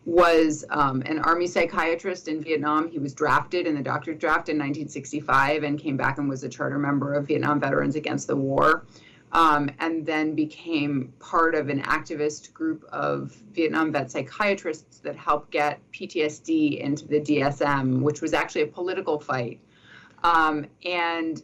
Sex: female